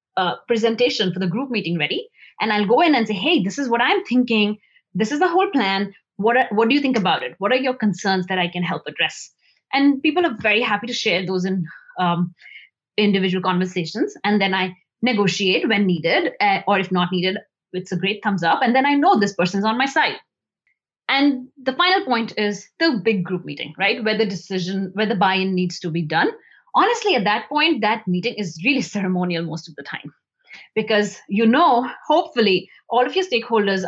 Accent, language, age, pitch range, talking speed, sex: Indian, English, 20-39, 190-260 Hz, 210 wpm, female